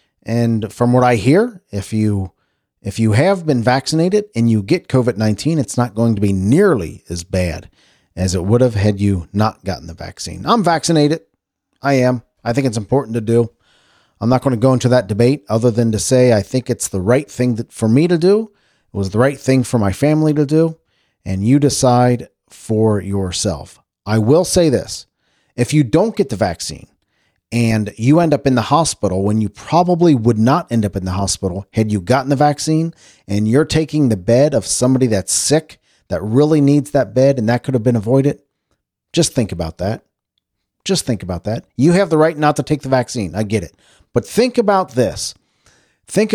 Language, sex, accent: English, male, American